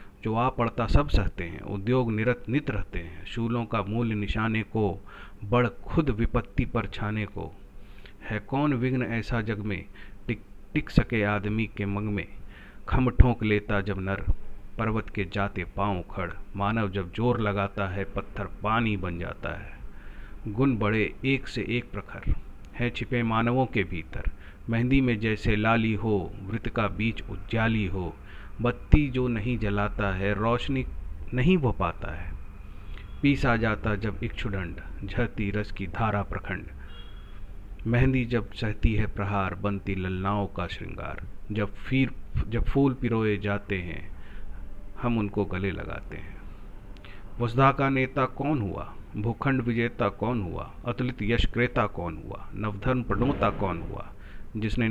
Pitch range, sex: 100-115 Hz, male